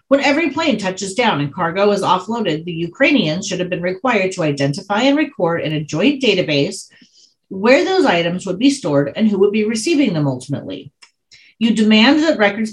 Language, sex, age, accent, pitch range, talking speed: English, female, 40-59, American, 145-225 Hz, 190 wpm